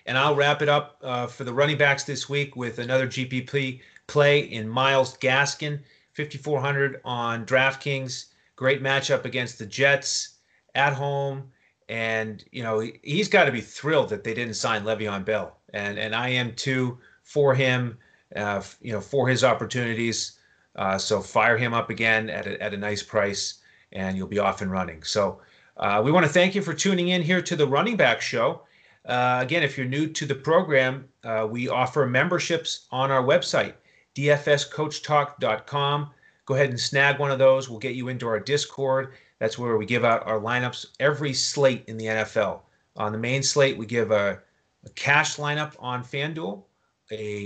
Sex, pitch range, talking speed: male, 115-145 Hz, 180 wpm